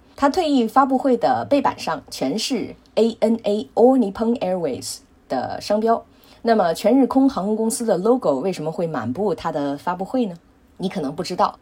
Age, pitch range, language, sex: 20-39, 160-250 Hz, Chinese, female